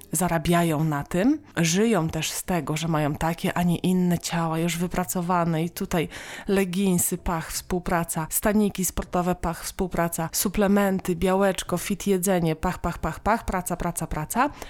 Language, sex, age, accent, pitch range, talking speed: Polish, female, 20-39, native, 170-225 Hz, 150 wpm